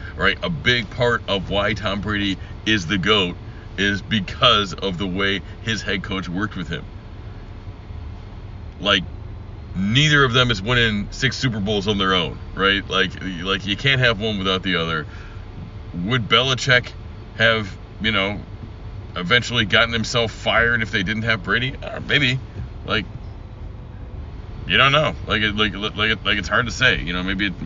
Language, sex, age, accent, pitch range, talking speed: English, male, 40-59, American, 95-115 Hz, 170 wpm